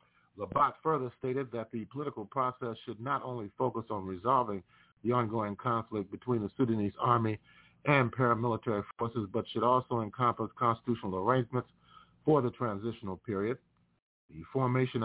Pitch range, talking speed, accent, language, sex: 105-130 Hz, 140 wpm, American, English, male